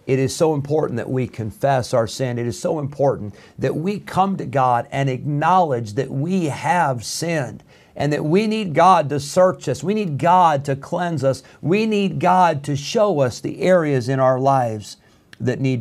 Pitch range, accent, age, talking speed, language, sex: 125-150 Hz, American, 50-69, 195 wpm, English, male